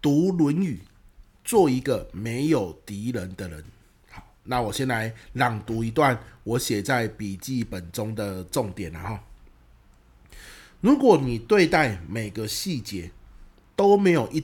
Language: Chinese